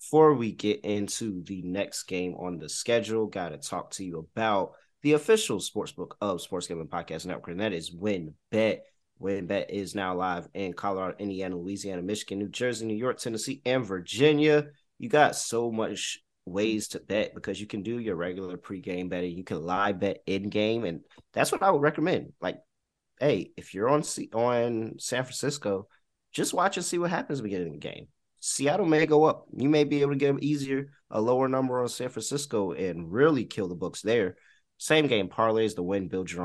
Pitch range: 95-125 Hz